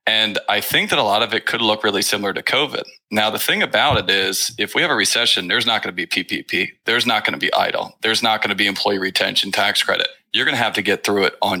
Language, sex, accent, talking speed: English, male, American, 285 wpm